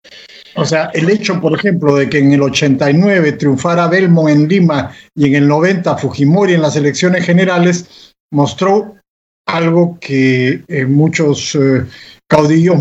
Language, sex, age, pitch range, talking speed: Spanish, male, 50-69, 145-195 Hz, 140 wpm